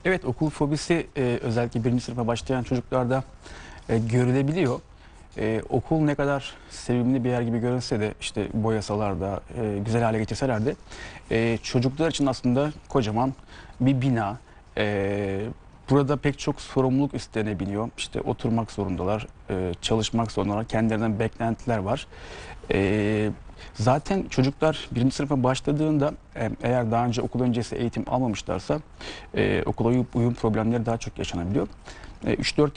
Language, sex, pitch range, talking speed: Turkish, male, 110-130 Hz, 135 wpm